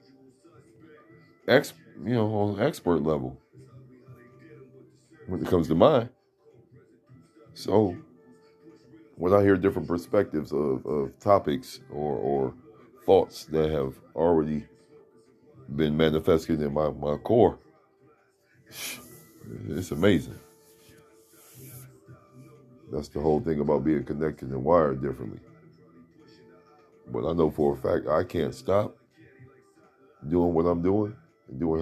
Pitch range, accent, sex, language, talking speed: 75-105 Hz, American, male, English, 110 wpm